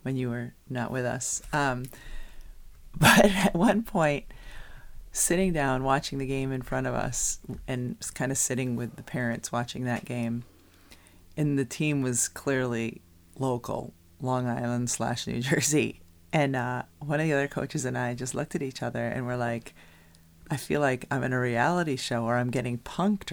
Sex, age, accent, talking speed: female, 30-49, American, 180 wpm